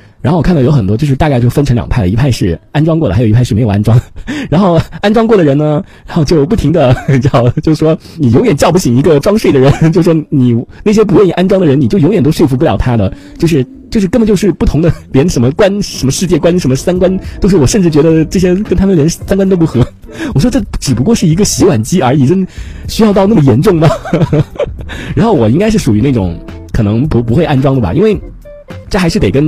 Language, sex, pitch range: Chinese, male, 110-165 Hz